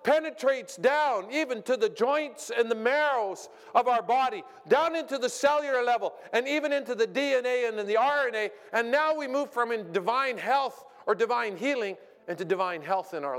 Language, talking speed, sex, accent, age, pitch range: Italian, 180 wpm, male, American, 50-69, 195-275 Hz